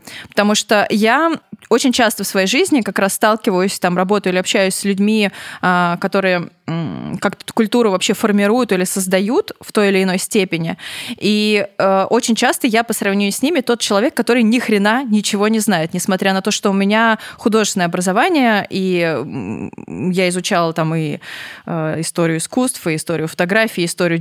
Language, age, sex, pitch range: Russian, 20-39, female, 195-235 Hz